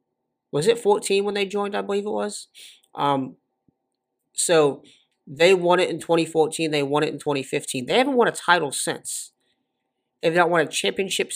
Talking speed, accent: 175 wpm, American